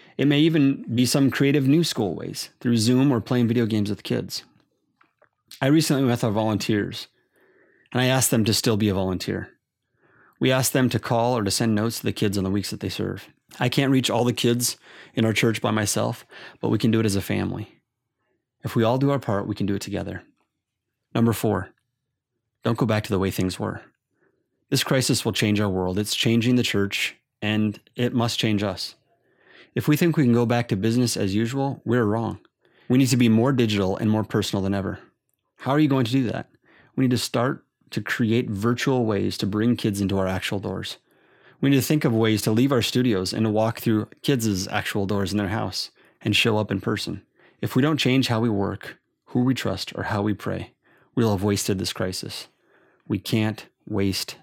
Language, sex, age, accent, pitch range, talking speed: English, male, 30-49, American, 105-125 Hz, 215 wpm